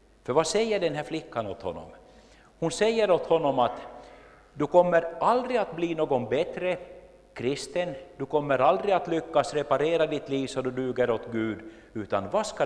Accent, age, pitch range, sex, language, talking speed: Finnish, 50-69, 135-195 Hz, male, Swedish, 175 wpm